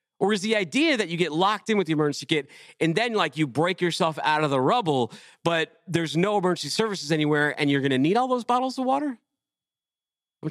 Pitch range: 150-235 Hz